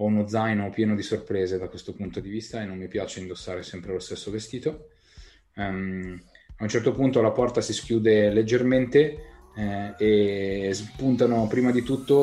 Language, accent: Italian, native